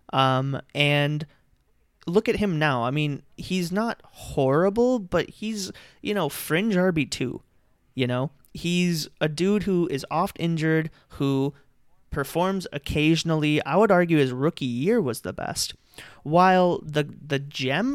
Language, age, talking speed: English, 30-49, 140 wpm